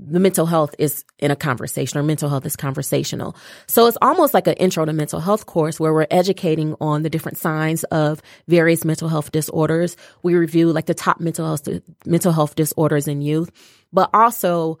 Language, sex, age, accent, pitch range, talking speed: English, female, 30-49, American, 155-195 Hz, 195 wpm